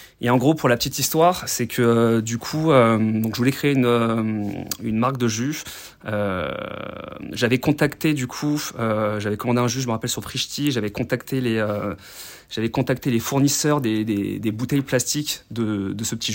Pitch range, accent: 110-135 Hz, French